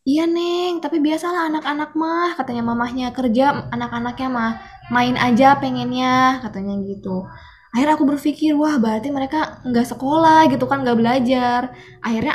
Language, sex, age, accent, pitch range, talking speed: Indonesian, female, 20-39, native, 210-255 Hz, 140 wpm